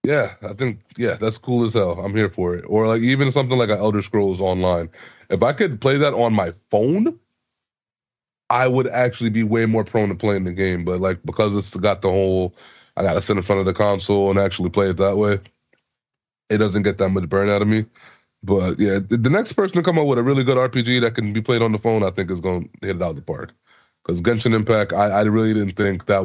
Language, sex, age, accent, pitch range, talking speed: English, male, 20-39, American, 95-115 Hz, 245 wpm